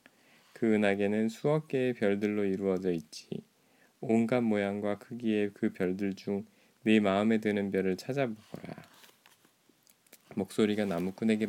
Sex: male